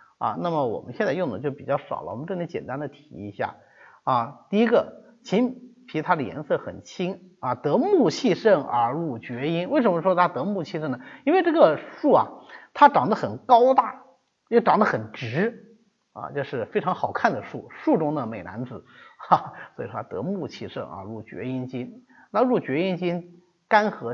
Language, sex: Chinese, male